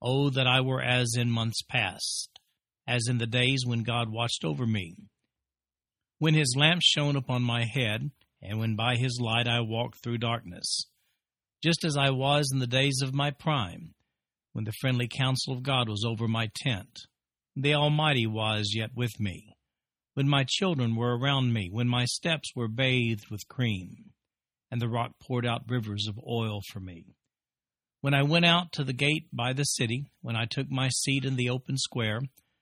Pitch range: 115-140 Hz